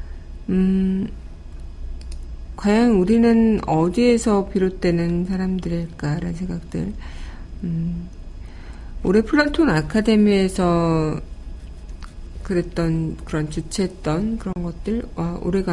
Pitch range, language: 155-195 Hz, Korean